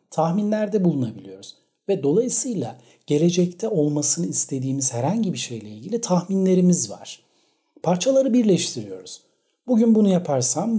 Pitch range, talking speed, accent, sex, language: 130-175 Hz, 100 wpm, native, male, Turkish